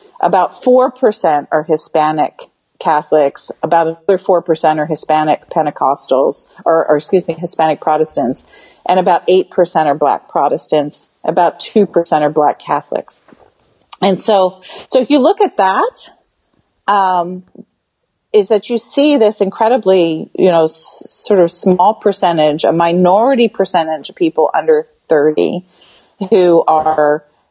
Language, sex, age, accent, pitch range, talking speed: English, female, 40-59, American, 155-195 Hz, 130 wpm